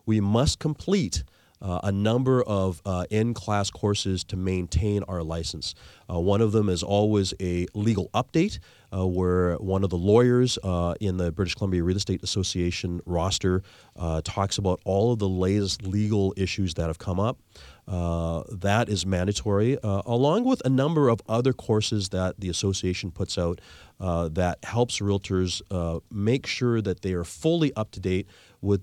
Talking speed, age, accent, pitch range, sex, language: 170 wpm, 30-49, American, 90-115 Hz, male, English